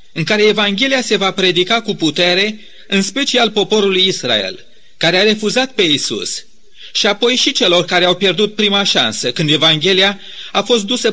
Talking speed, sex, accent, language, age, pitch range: 165 wpm, male, native, Romanian, 40-59, 180-225 Hz